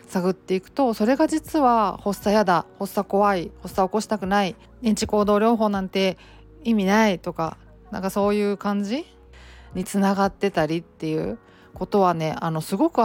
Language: Japanese